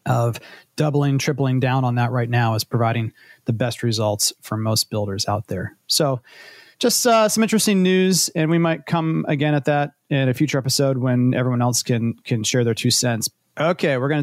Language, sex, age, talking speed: English, male, 30-49, 200 wpm